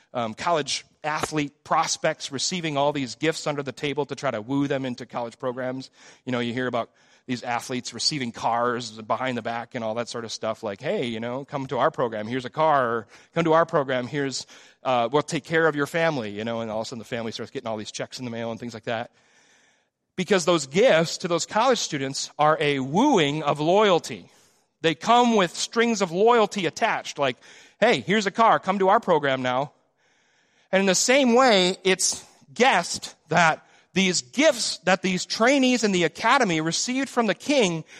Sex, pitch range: male, 135-220 Hz